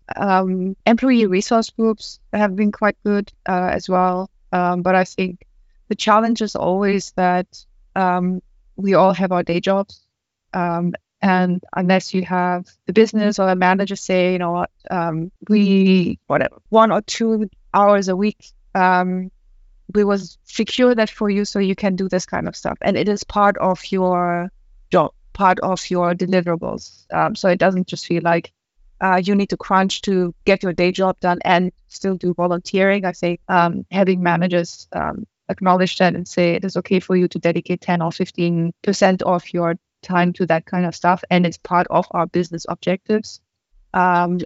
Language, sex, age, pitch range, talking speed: English, female, 20-39, 175-195 Hz, 175 wpm